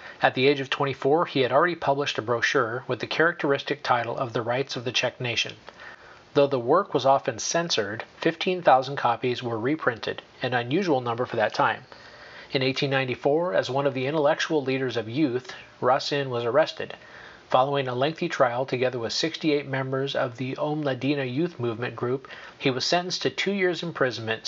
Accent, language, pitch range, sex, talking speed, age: American, English, 125-145 Hz, male, 175 wpm, 40-59